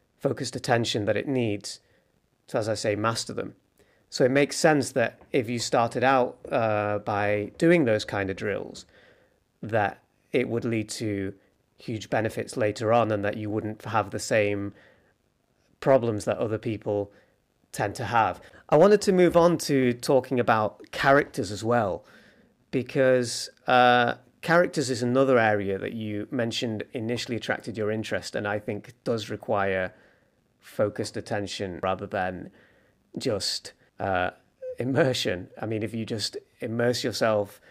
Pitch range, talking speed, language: 105-125 Hz, 150 wpm, English